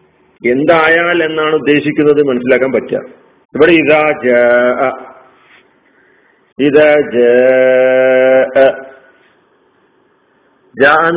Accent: native